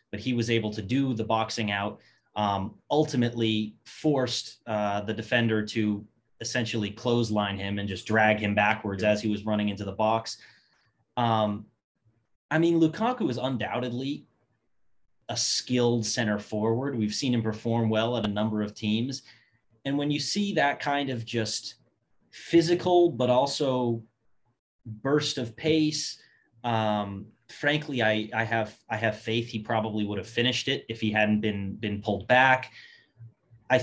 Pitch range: 110-130 Hz